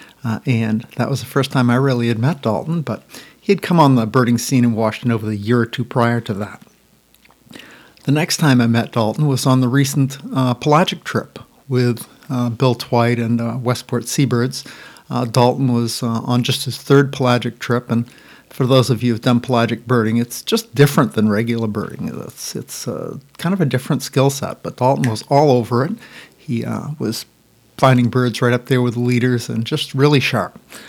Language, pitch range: English, 120-145 Hz